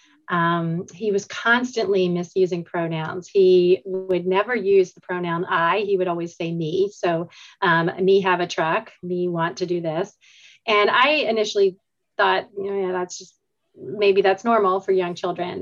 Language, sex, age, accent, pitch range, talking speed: English, female, 30-49, American, 180-205 Hz, 160 wpm